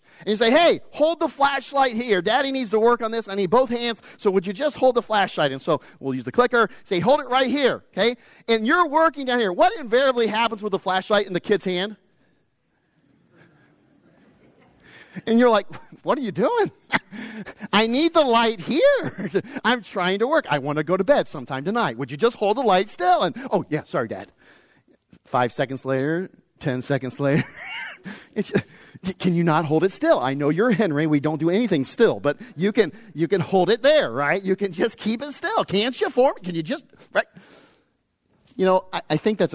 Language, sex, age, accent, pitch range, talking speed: English, male, 40-59, American, 145-230 Hz, 210 wpm